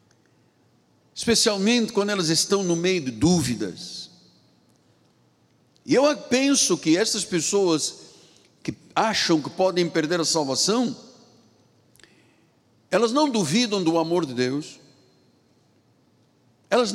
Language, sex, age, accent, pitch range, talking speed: Portuguese, male, 60-79, Brazilian, 155-220 Hz, 105 wpm